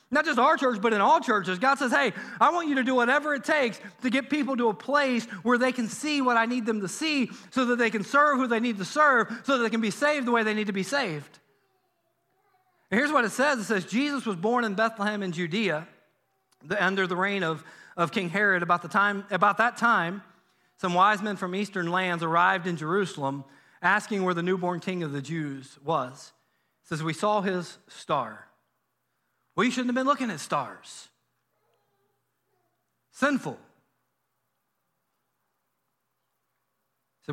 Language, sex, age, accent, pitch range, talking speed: English, male, 40-59, American, 170-235 Hz, 195 wpm